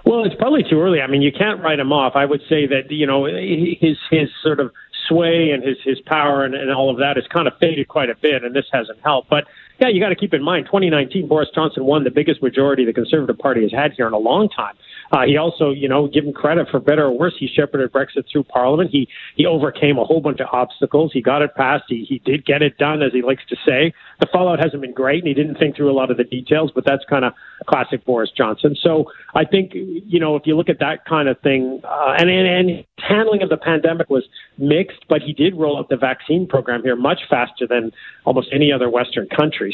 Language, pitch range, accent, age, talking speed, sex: English, 130-155 Hz, American, 40-59, 255 wpm, male